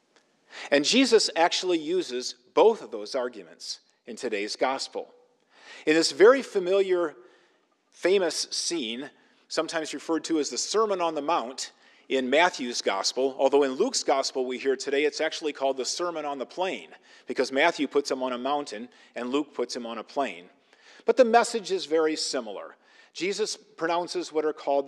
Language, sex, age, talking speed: English, male, 50-69, 165 wpm